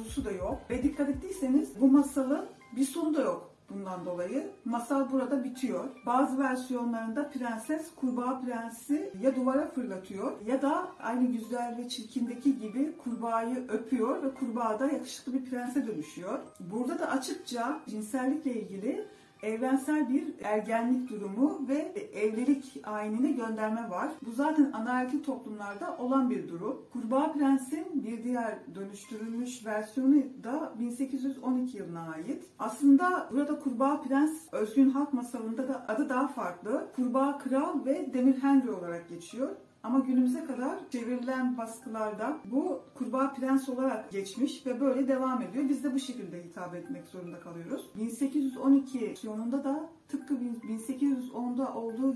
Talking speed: 135 wpm